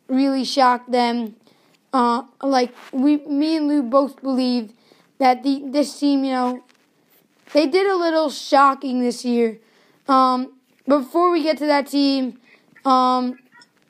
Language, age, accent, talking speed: English, 20-39, American, 140 wpm